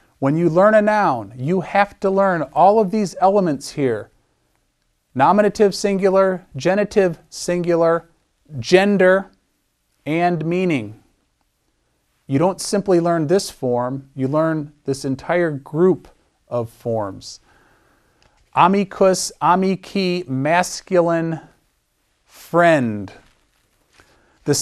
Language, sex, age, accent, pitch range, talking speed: English, male, 40-59, American, 135-185 Hz, 95 wpm